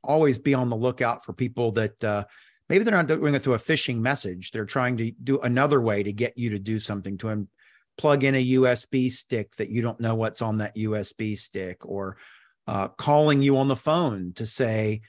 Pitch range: 110-135 Hz